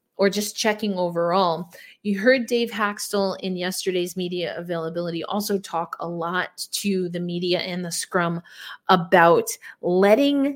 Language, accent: English, American